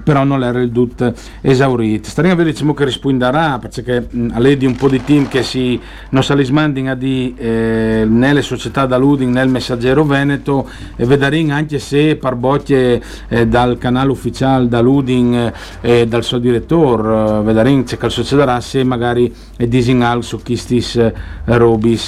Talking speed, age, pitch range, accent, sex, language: 165 wpm, 40-59, 115-140 Hz, native, male, Italian